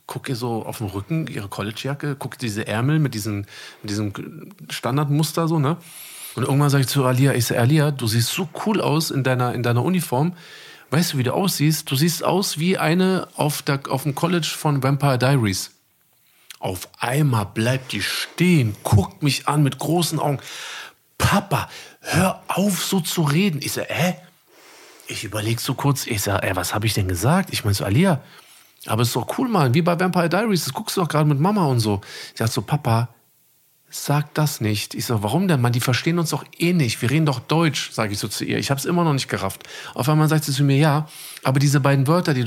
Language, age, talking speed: German, 40-59, 220 wpm